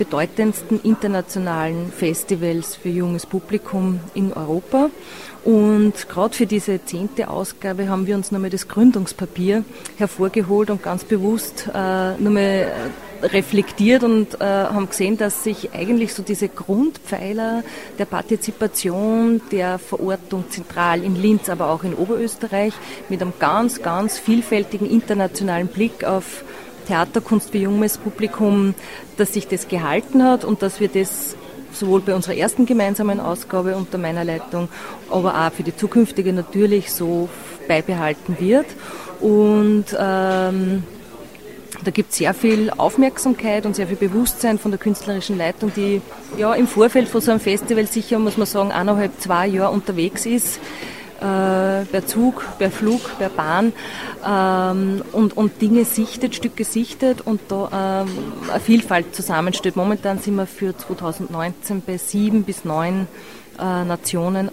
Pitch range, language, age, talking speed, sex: 185-215 Hz, German, 30-49, 140 wpm, female